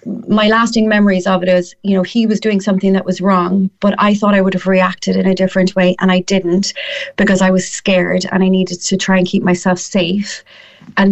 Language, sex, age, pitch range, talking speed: English, female, 30-49, 190-225 Hz, 230 wpm